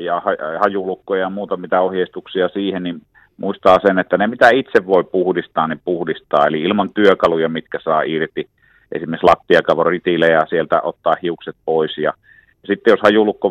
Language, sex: Finnish, male